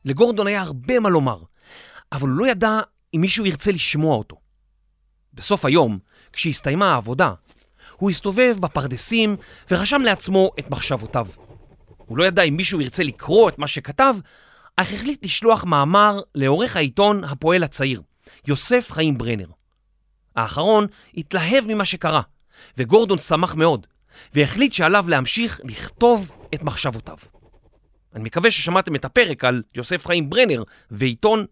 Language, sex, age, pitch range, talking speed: Hebrew, male, 40-59, 135-210 Hz, 130 wpm